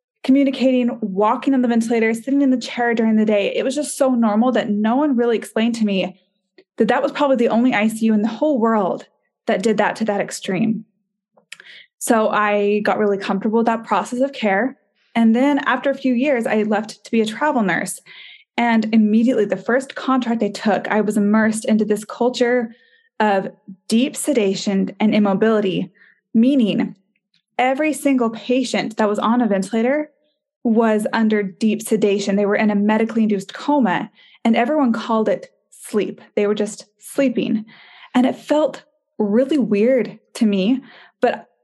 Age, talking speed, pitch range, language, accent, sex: 20-39, 170 wpm, 210-255 Hz, English, American, female